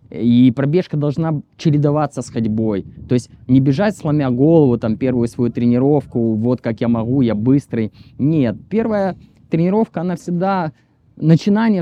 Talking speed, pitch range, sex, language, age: 140 wpm, 120-165 Hz, male, Ukrainian, 20-39